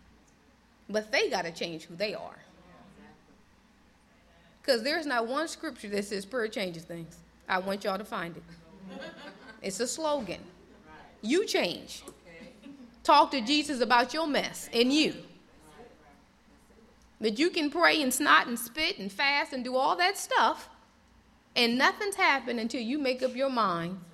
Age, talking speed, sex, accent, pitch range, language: 30-49, 150 wpm, female, American, 200-295 Hz, English